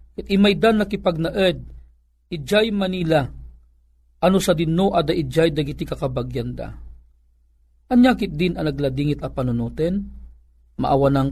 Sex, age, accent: male, 50-69, native